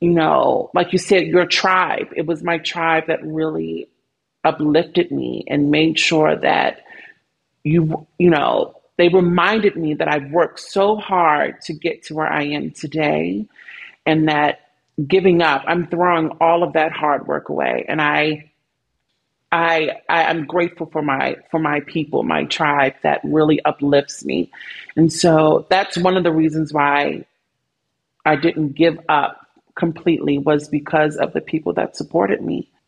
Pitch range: 150-180 Hz